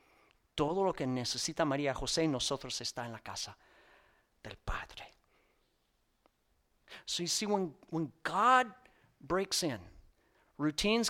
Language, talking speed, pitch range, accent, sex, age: English, 125 wpm, 145-190 Hz, American, male, 40-59